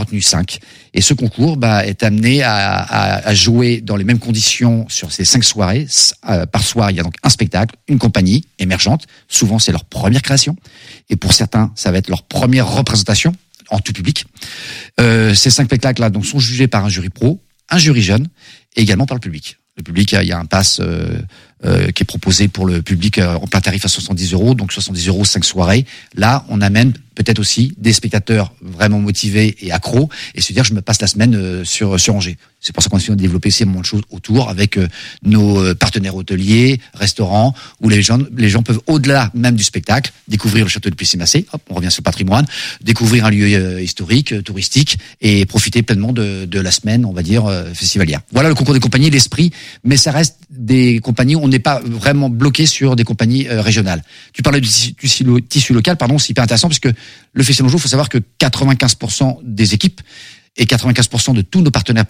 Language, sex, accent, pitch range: French, male, French, 100-130 Hz